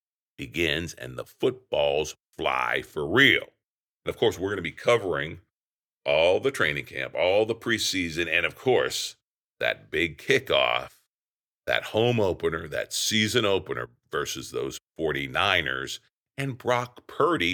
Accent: American